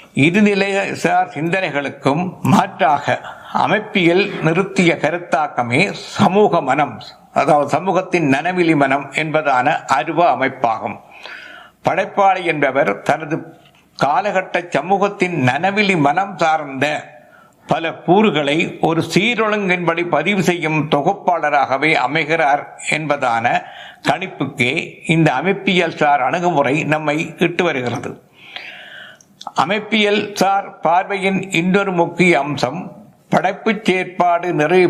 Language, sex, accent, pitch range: Tamil, male, native, 150-195 Hz